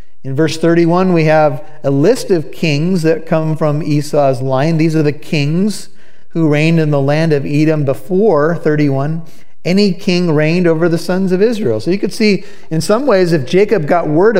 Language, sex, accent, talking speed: English, male, American, 190 wpm